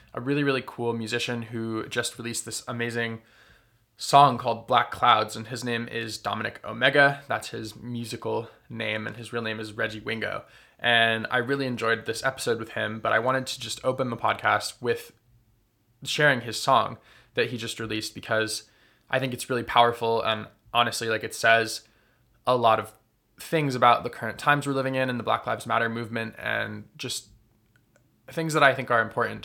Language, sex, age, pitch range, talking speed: English, male, 20-39, 110-125 Hz, 185 wpm